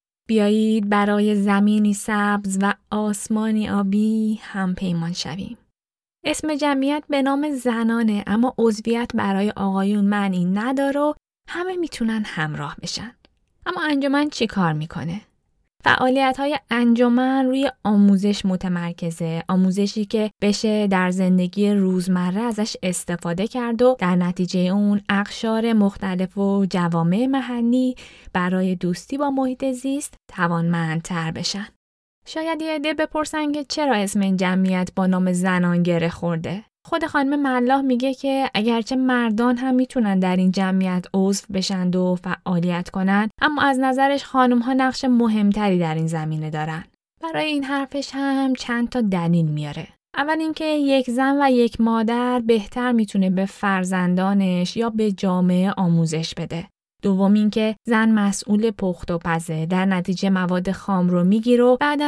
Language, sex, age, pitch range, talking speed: Persian, female, 10-29, 185-255 Hz, 135 wpm